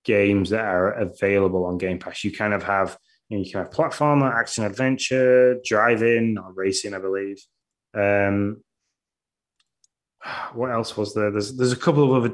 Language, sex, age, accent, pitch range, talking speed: English, male, 20-39, British, 100-120 Hz, 170 wpm